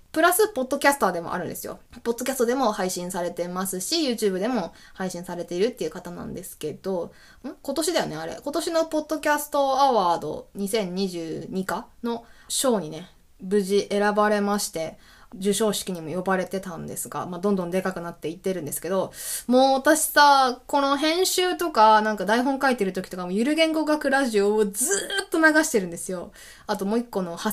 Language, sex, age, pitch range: Japanese, female, 20-39, 185-265 Hz